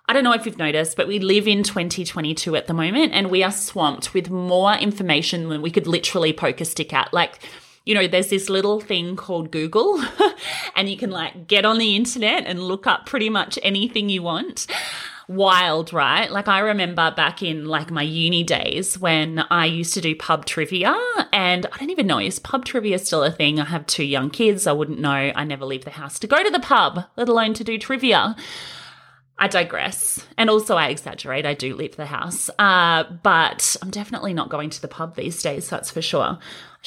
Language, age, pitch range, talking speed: English, 30-49, 165-235 Hz, 215 wpm